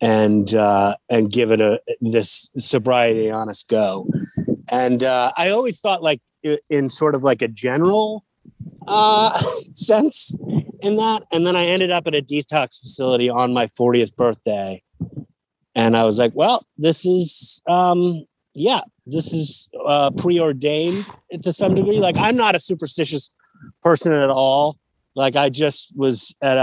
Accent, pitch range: American, 125-165 Hz